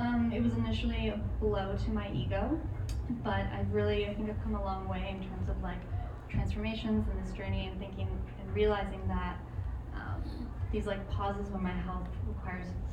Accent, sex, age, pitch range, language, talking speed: American, female, 10-29, 90-105 Hz, English, 185 wpm